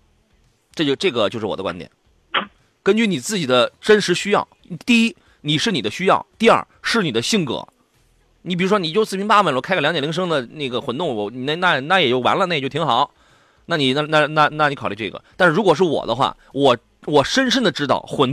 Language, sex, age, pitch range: Chinese, male, 30-49, 135-205 Hz